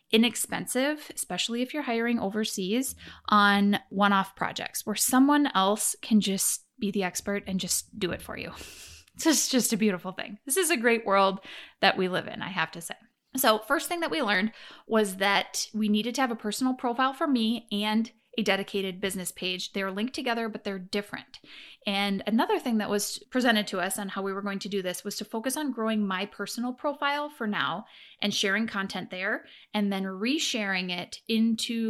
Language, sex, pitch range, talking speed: English, female, 195-235 Hz, 195 wpm